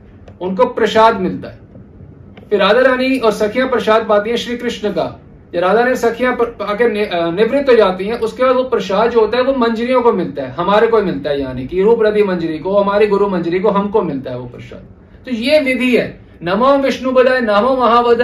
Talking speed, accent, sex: 195 wpm, native, male